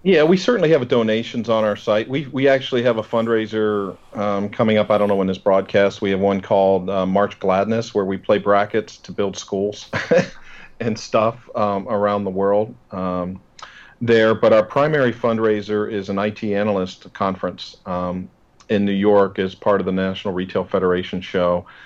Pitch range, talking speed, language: 95-110 Hz, 180 wpm, English